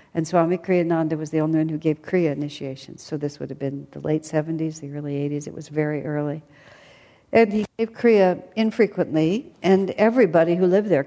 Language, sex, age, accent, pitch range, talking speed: English, female, 60-79, American, 150-185 Hz, 195 wpm